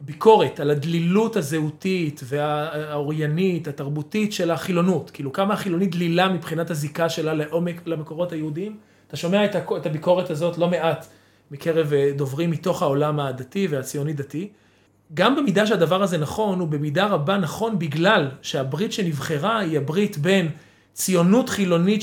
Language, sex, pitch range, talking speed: Hebrew, male, 150-195 Hz, 135 wpm